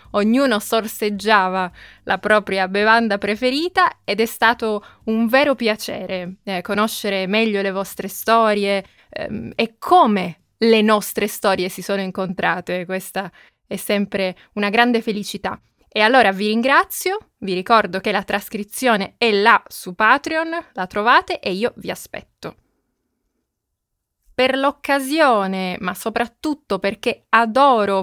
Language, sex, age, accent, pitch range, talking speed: Italian, female, 20-39, native, 195-245 Hz, 125 wpm